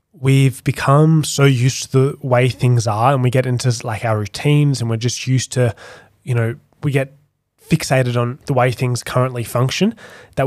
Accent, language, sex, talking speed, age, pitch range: Australian, English, male, 190 wpm, 20-39, 115-135 Hz